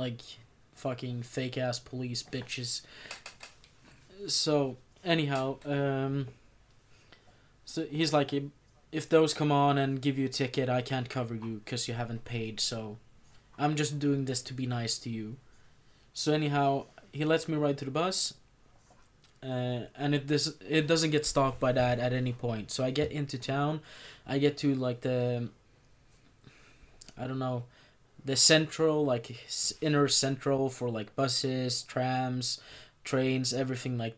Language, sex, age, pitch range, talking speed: English, male, 20-39, 125-145 Hz, 150 wpm